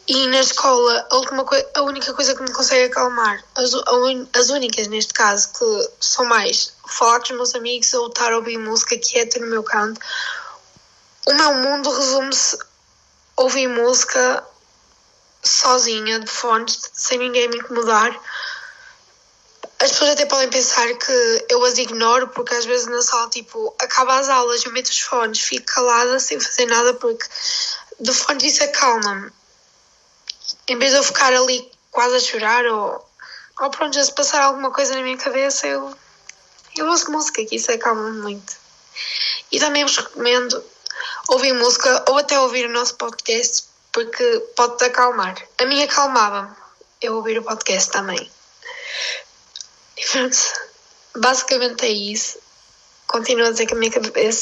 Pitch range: 240-290 Hz